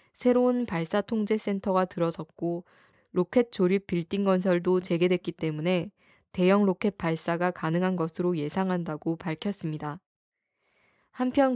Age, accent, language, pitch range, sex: 10-29, native, Korean, 170-210 Hz, female